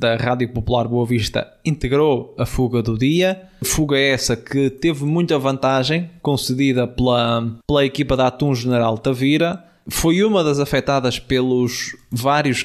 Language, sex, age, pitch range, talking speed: Portuguese, male, 20-39, 125-140 Hz, 140 wpm